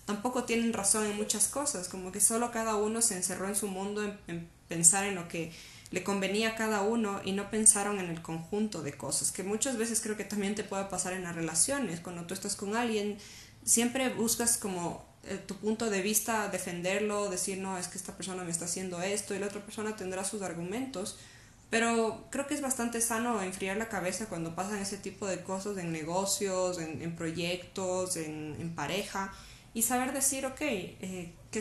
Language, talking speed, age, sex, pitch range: Spanish, 205 wpm, 20-39, female, 180-220 Hz